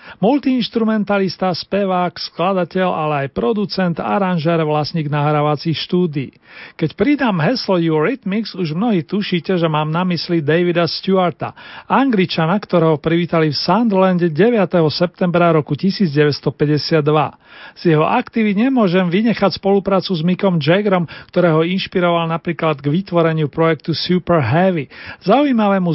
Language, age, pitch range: Slovak, 40-59, 160-195 Hz